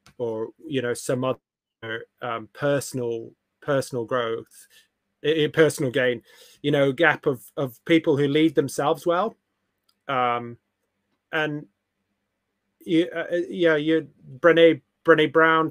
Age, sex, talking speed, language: 20-39, male, 120 wpm, English